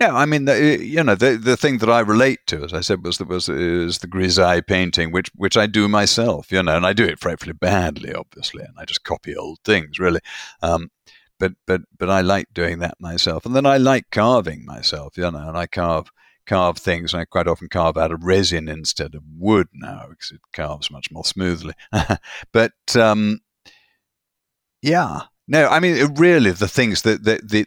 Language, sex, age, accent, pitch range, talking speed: English, male, 50-69, British, 85-110 Hz, 210 wpm